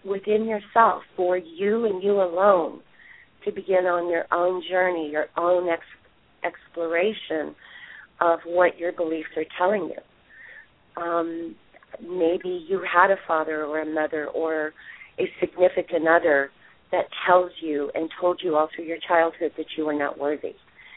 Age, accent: 40-59, American